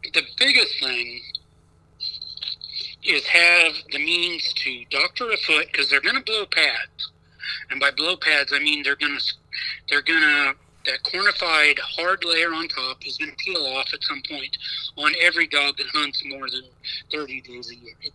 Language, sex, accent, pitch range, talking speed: English, male, American, 135-175 Hz, 180 wpm